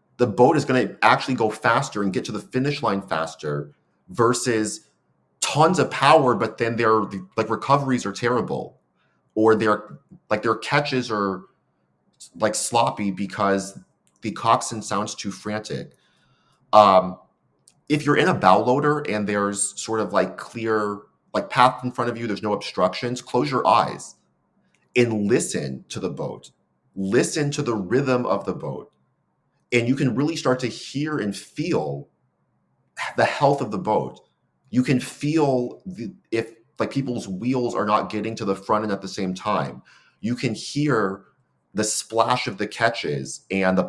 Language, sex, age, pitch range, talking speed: English, male, 30-49, 100-130 Hz, 160 wpm